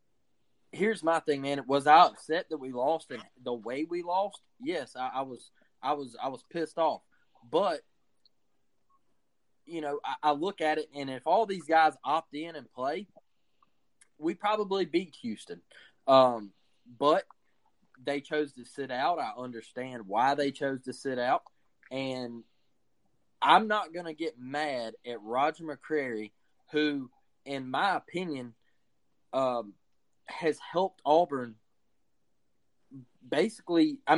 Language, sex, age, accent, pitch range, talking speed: English, male, 20-39, American, 130-180 Hz, 140 wpm